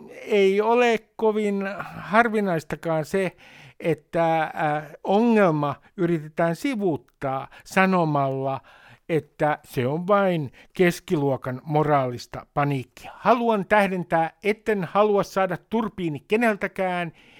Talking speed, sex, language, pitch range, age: 85 wpm, male, Finnish, 150-205 Hz, 60-79